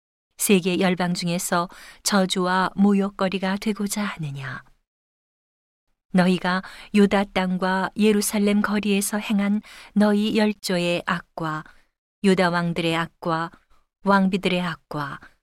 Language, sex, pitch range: Korean, female, 175-200 Hz